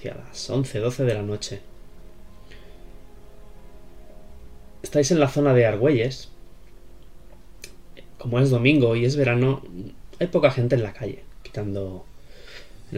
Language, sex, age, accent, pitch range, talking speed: Spanish, male, 20-39, Spanish, 105-130 Hz, 125 wpm